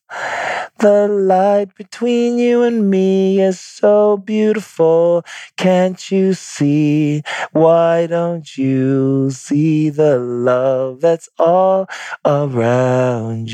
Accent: American